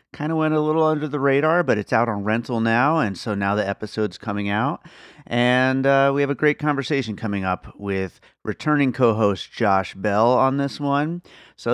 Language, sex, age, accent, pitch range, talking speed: English, male, 30-49, American, 95-125 Hz, 200 wpm